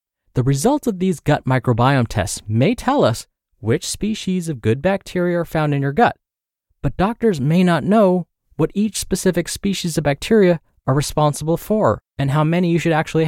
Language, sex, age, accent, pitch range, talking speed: English, male, 20-39, American, 120-175 Hz, 180 wpm